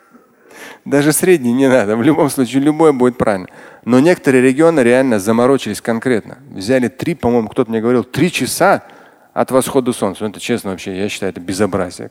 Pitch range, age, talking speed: 115-150 Hz, 30-49, 170 wpm